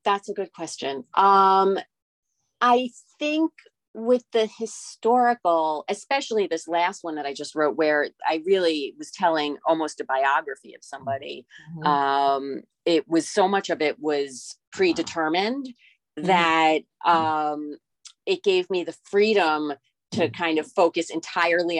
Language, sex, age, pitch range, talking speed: English, female, 30-49, 155-225 Hz, 135 wpm